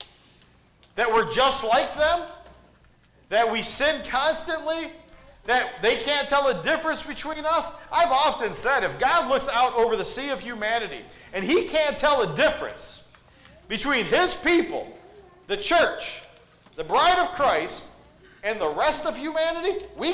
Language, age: English, 40-59